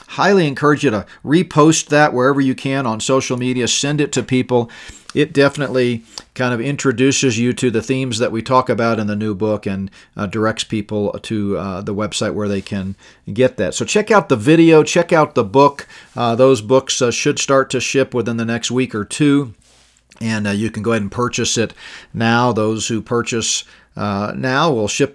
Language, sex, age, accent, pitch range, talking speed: English, male, 40-59, American, 110-135 Hz, 205 wpm